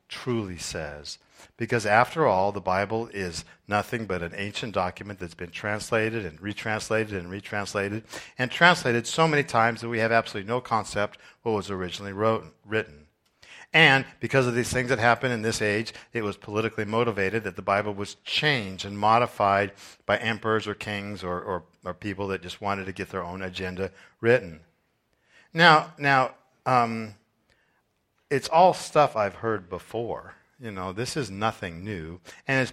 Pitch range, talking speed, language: 100-125 Hz, 165 wpm, English